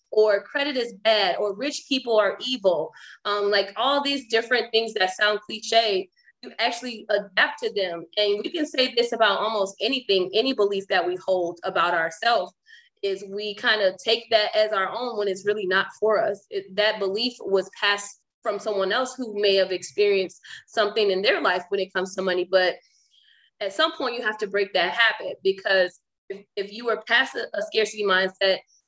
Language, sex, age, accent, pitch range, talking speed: English, female, 20-39, American, 195-255 Hz, 195 wpm